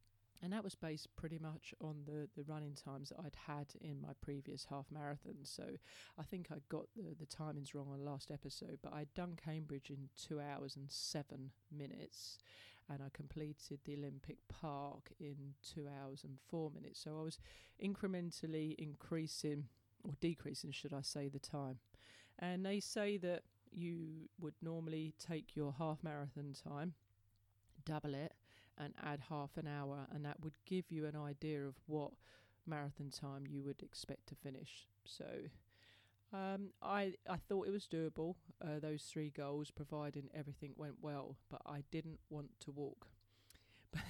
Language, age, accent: English, 40-59, British